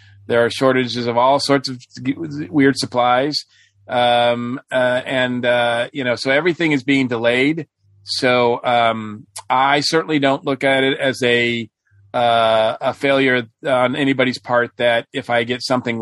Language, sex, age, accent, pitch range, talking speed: English, male, 40-59, American, 115-140 Hz, 155 wpm